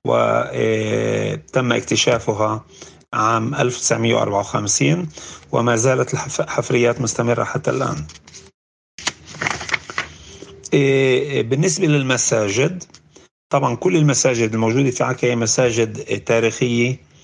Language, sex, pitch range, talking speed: Arabic, male, 110-130 Hz, 75 wpm